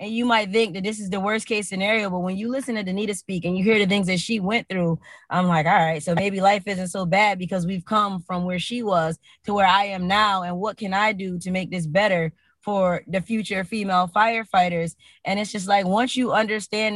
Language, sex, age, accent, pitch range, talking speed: English, female, 20-39, American, 175-205 Hz, 250 wpm